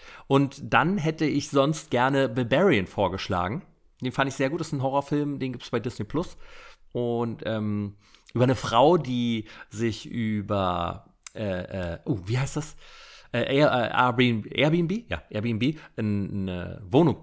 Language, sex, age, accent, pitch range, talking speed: German, male, 40-59, German, 110-145 Hz, 165 wpm